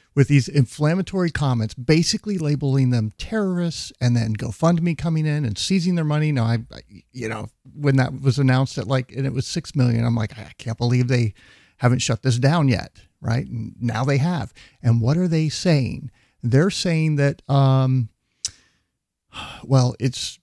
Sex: male